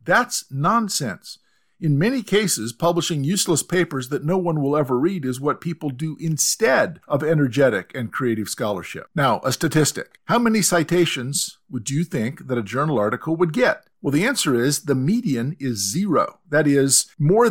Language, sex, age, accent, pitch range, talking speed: English, male, 50-69, American, 130-175 Hz, 170 wpm